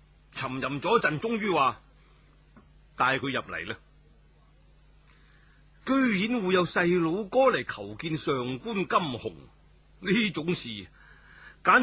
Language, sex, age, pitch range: Chinese, male, 30-49, 125-180 Hz